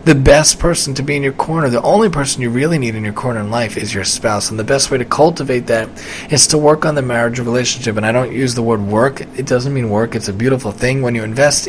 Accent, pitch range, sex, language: American, 115-140 Hz, male, English